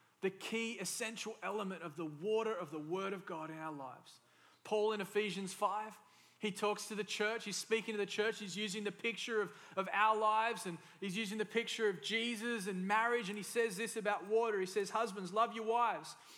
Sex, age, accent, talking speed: male, 20-39, Australian, 215 wpm